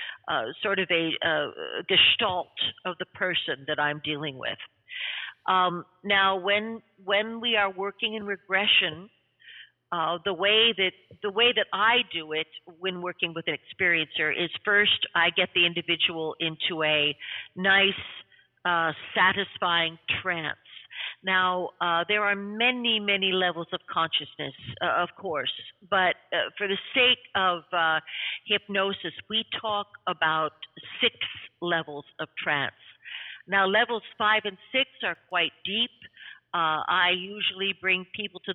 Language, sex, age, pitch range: English, female, 50-69, 165-200 Hz